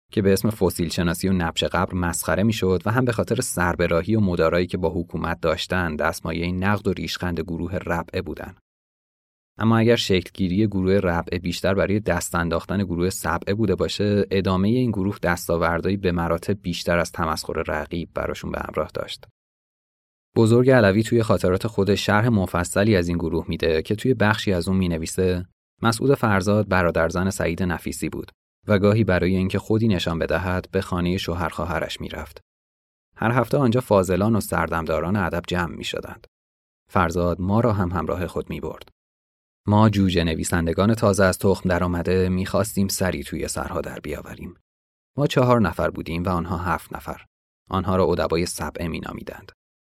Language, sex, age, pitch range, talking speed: Persian, male, 30-49, 85-100 Hz, 160 wpm